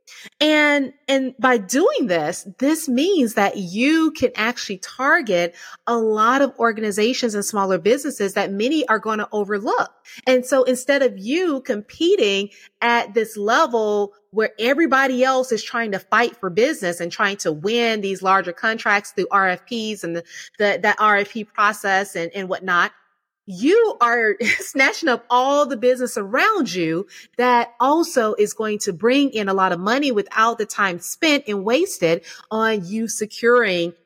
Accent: American